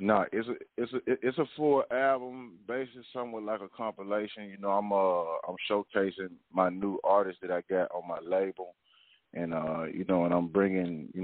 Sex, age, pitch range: male, 30-49, 85-100 Hz